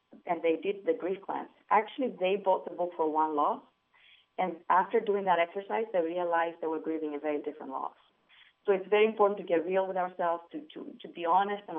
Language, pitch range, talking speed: English, 165-205 Hz, 220 wpm